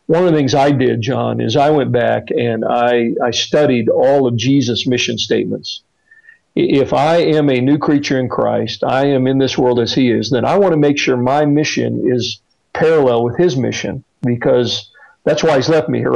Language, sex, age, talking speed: English, male, 50-69, 210 wpm